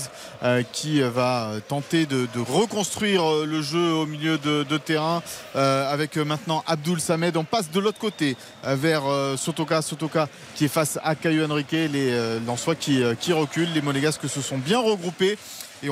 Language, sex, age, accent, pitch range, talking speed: French, male, 40-59, French, 145-185 Hz, 175 wpm